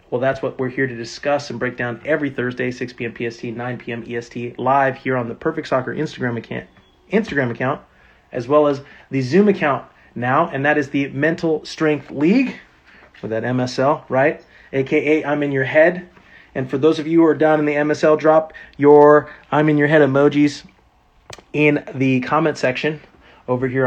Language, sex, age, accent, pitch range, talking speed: English, male, 30-49, American, 125-150 Hz, 190 wpm